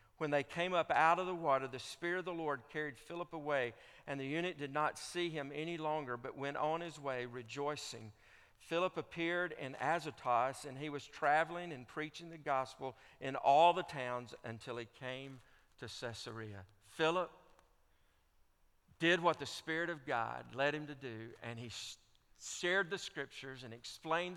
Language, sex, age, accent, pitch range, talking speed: English, male, 50-69, American, 115-160 Hz, 170 wpm